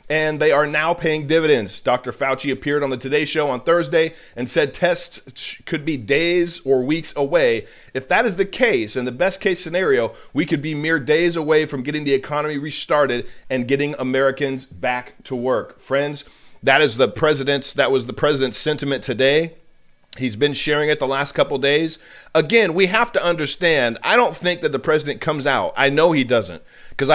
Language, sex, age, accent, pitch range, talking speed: English, male, 40-59, American, 130-165 Hz, 195 wpm